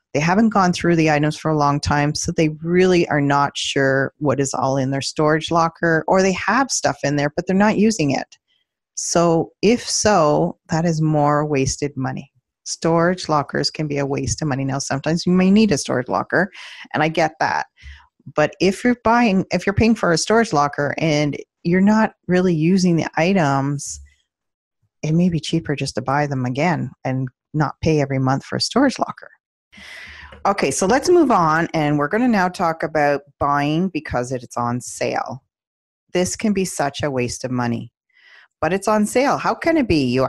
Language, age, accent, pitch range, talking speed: English, 30-49, American, 135-180 Hz, 195 wpm